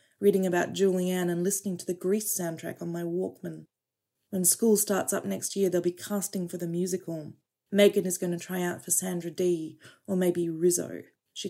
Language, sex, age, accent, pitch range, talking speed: English, female, 20-39, Australian, 165-195 Hz, 195 wpm